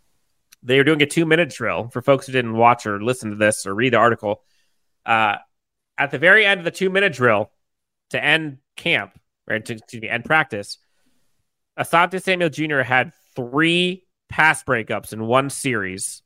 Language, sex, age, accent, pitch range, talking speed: English, male, 30-49, American, 115-155 Hz, 175 wpm